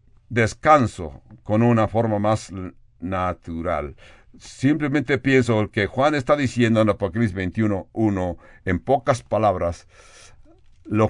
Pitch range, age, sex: 100-125 Hz, 60-79, male